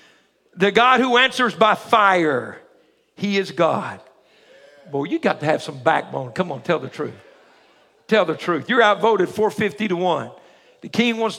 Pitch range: 185-240 Hz